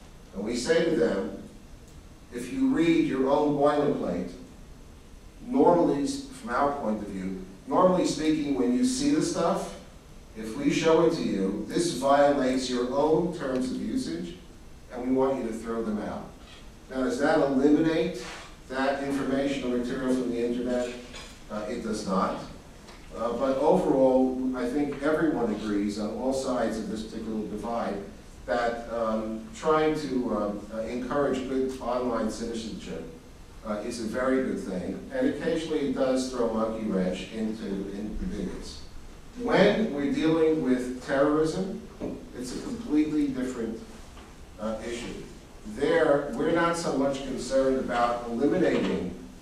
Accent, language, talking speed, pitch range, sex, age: American, English, 145 wpm, 110-145 Hz, male, 50-69